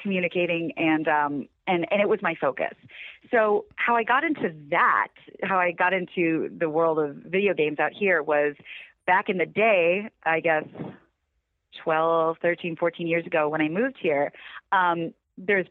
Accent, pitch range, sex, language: American, 170-225 Hz, female, English